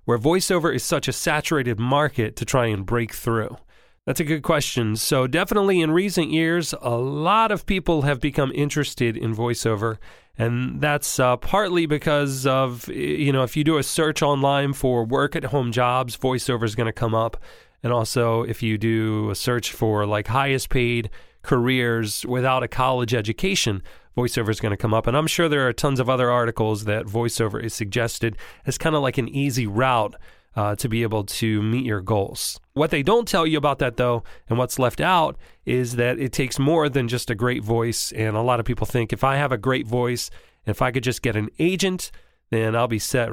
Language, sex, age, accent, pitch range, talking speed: English, male, 30-49, American, 115-140 Hz, 210 wpm